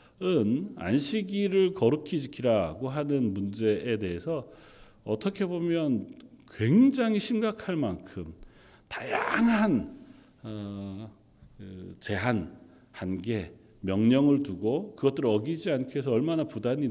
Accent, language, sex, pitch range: native, Korean, male, 105-150 Hz